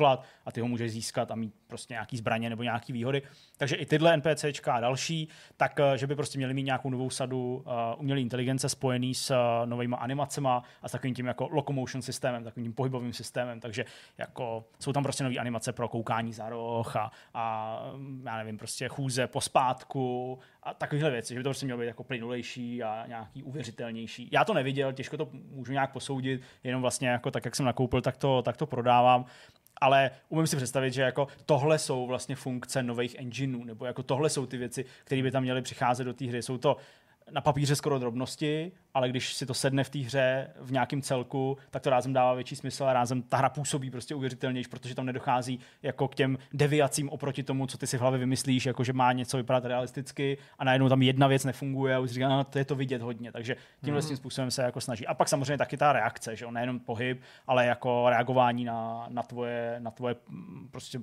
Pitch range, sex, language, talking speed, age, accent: 120-140 Hz, male, Czech, 215 wpm, 20-39, native